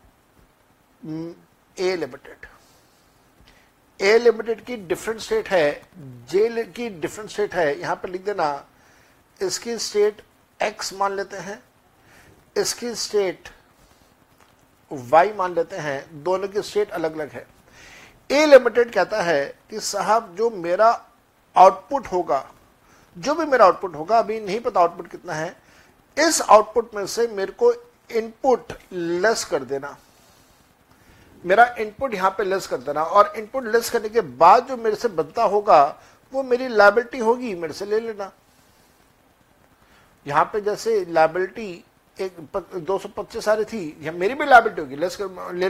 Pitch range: 185-240 Hz